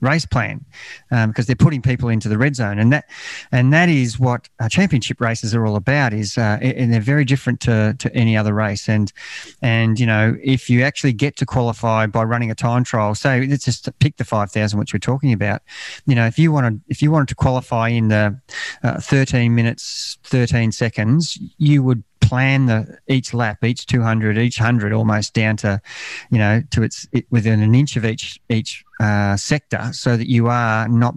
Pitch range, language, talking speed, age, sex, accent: 115-140 Hz, English, 210 wpm, 30-49, male, Australian